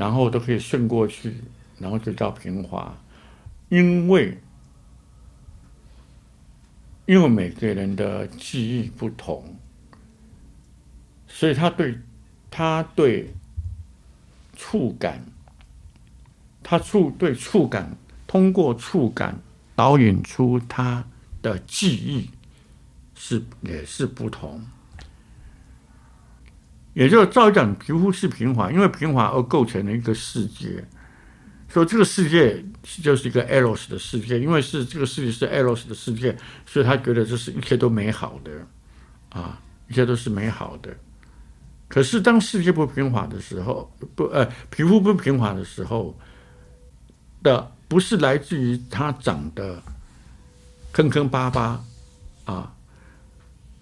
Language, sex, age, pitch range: Chinese, male, 60-79, 100-155 Hz